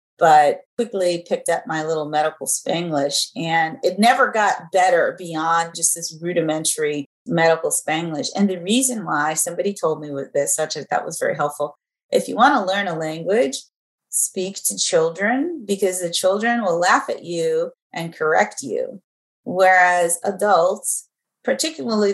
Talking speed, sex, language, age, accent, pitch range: 150 wpm, female, English, 30-49, American, 155-215 Hz